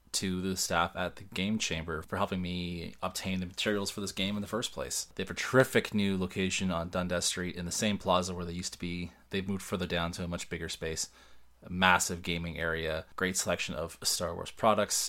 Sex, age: male, 20-39